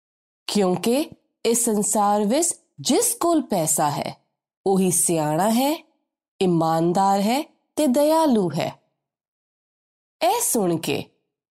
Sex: female